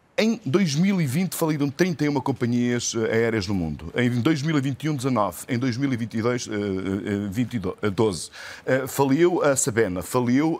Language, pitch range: Portuguese, 110-175 Hz